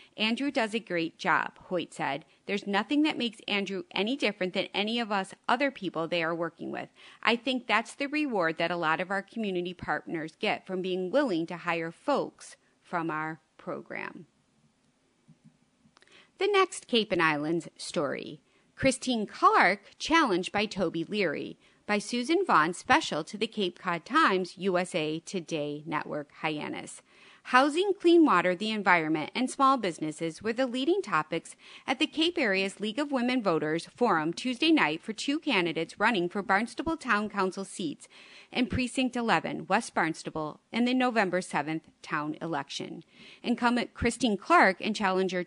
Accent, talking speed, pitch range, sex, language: American, 155 wpm, 175-255 Hz, female, English